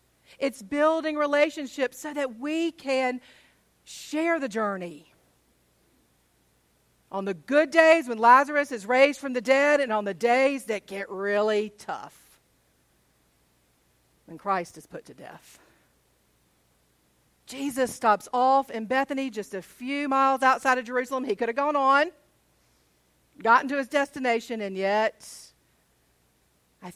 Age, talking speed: 50-69, 130 wpm